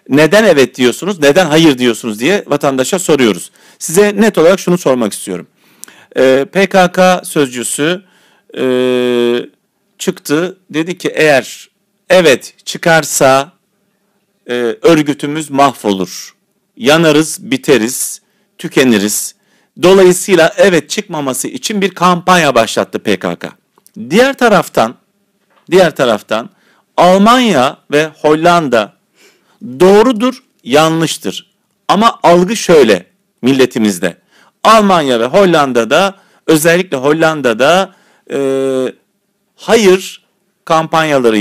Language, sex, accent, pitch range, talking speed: Turkish, male, native, 140-200 Hz, 85 wpm